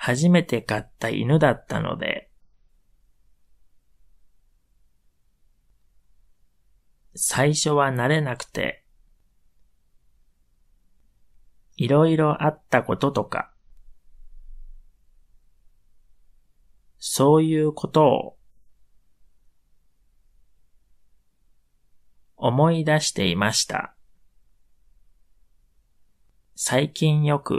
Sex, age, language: male, 30-49, Japanese